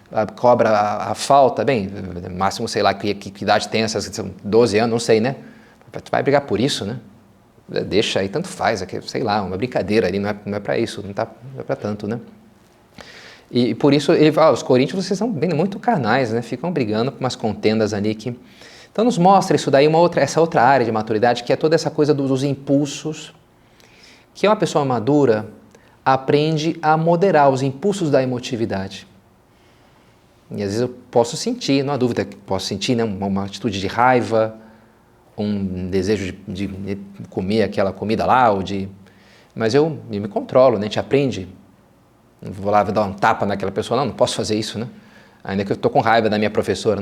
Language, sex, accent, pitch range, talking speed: Portuguese, male, Brazilian, 100-135 Hz, 205 wpm